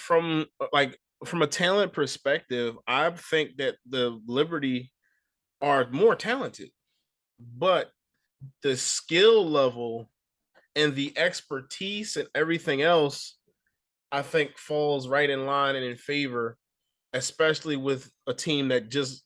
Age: 20-39